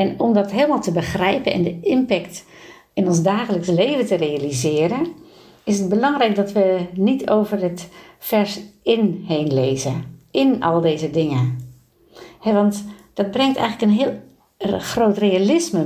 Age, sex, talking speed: 60-79, female, 150 wpm